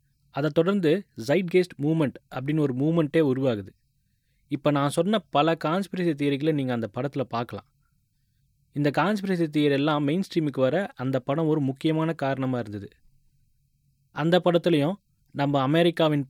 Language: Tamil